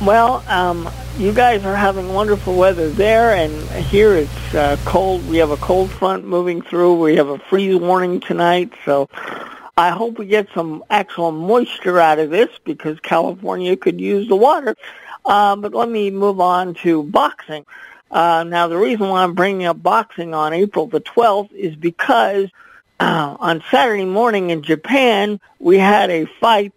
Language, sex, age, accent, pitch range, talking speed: English, male, 50-69, American, 160-205 Hz, 175 wpm